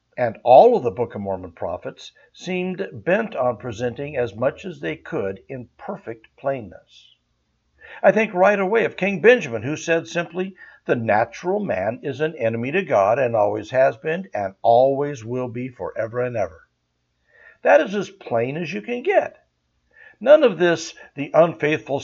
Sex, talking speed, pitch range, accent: male, 170 wpm, 115-170 Hz, American